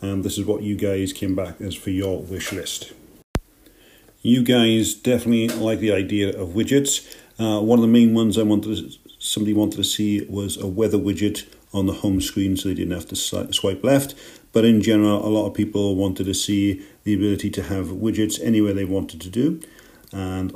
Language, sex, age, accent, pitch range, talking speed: English, male, 40-59, British, 100-110 Hz, 195 wpm